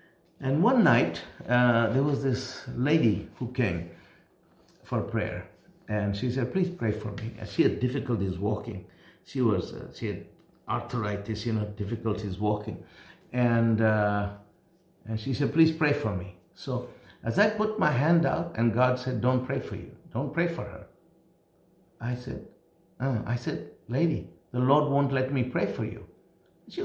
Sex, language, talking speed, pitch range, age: male, English, 170 wpm, 115-155 Hz, 60-79